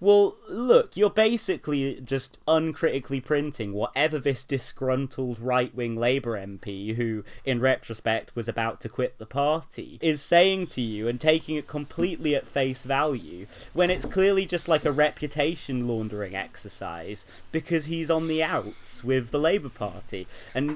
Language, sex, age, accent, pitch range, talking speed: English, male, 30-49, British, 105-145 Hz, 150 wpm